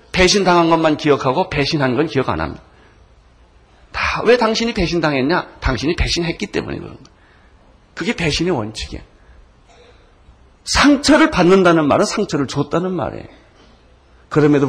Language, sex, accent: Korean, male, native